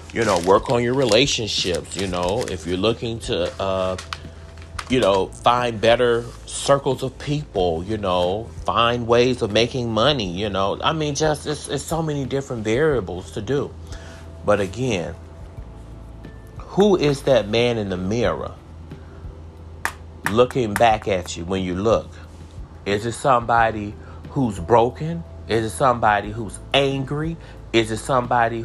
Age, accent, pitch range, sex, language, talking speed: 40-59, American, 90-130 Hz, male, English, 145 wpm